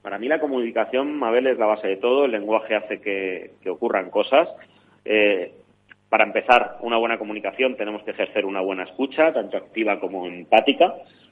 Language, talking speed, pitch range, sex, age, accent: Spanish, 175 wpm, 105-135 Hz, male, 30-49, Spanish